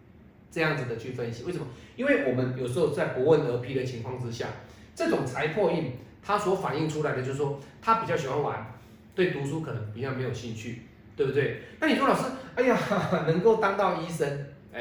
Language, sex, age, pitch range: Chinese, male, 30-49, 110-155 Hz